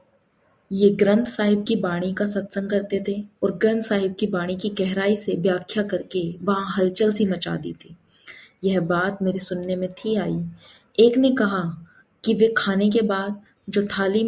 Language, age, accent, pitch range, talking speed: Hindi, 20-39, native, 185-215 Hz, 175 wpm